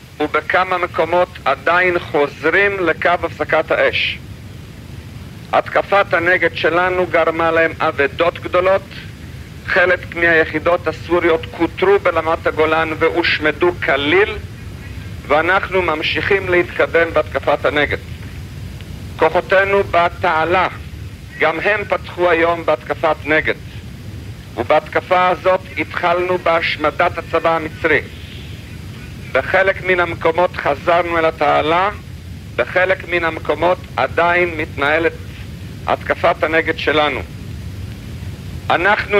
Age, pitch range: 50-69, 145-180 Hz